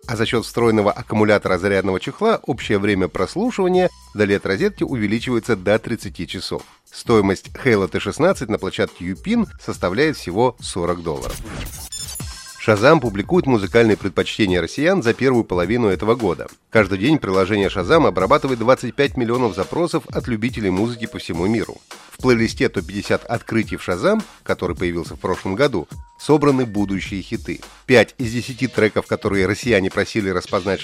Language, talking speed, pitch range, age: Russian, 140 wpm, 100-135 Hz, 30-49